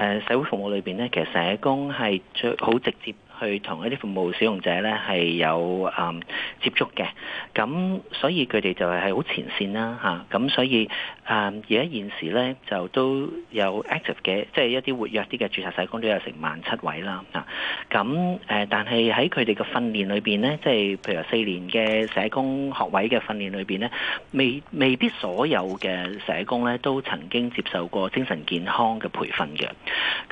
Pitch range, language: 100-130 Hz, Chinese